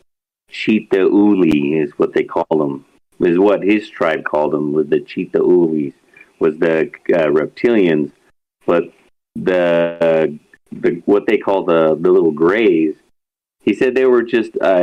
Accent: American